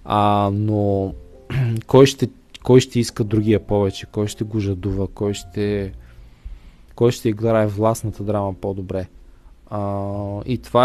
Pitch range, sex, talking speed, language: 95-120 Hz, male, 120 wpm, Bulgarian